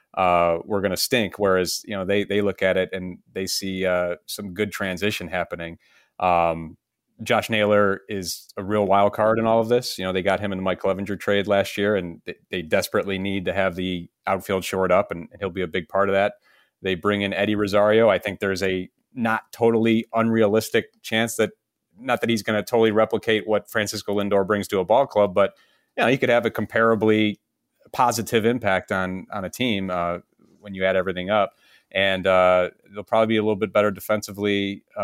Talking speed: 210 wpm